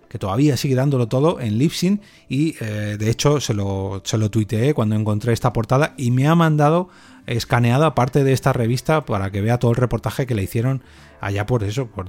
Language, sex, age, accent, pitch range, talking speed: Spanish, male, 30-49, Spanish, 110-135 Hz, 210 wpm